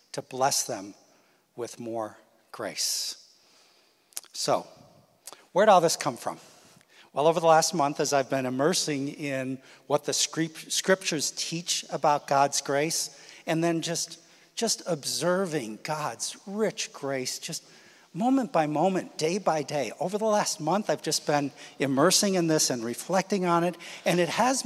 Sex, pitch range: male, 140-190 Hz